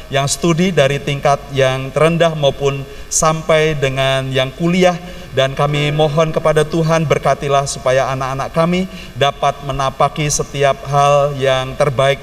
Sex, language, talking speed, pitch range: male, Indonesian, 130 wpm, 135-160 Hz